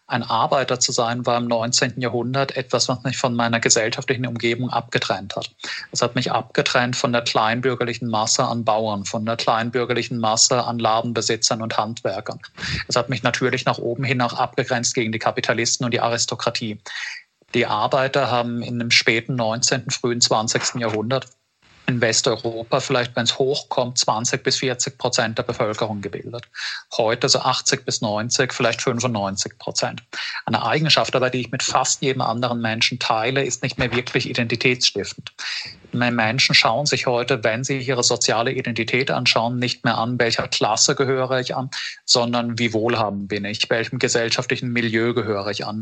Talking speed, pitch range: 170 wpm, 115-130 Hz